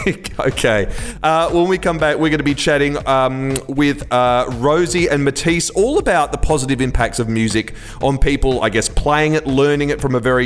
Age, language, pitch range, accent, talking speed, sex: 30-49, English, 115-145 Hz, Australian, 200 wpm, male